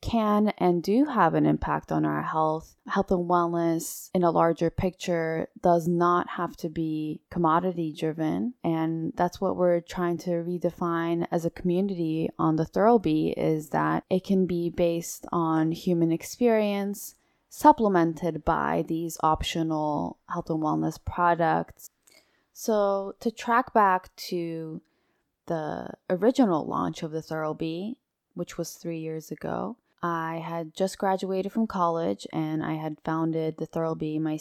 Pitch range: 160-185 Hz